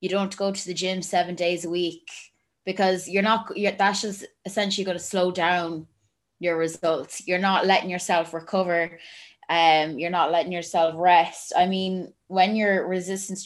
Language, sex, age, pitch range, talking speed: English, female, 20-39, 170-195 Hz, 175 wpm